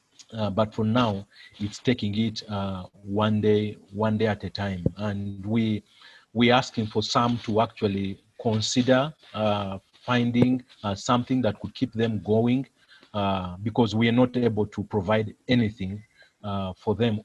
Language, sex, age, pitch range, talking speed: English, male, 40-59, 100-120 Hz, 155 wpm